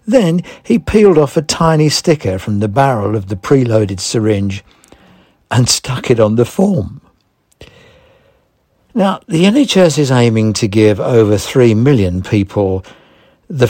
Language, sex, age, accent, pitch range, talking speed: English, male, 60-79, British, 105-145 Hz, 140 wpm